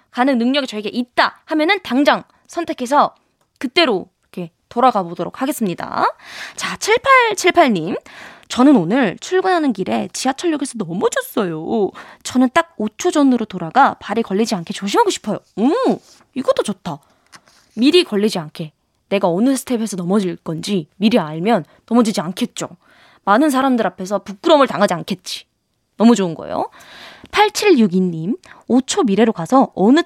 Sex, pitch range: female, 185-290 Hz